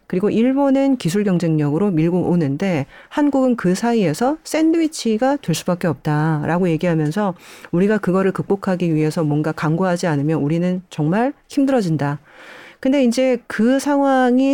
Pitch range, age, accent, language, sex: 165-255 Hz, 40-59, native, Korean, female